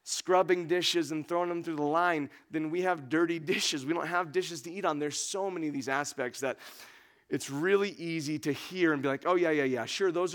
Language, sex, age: English, male, 30-49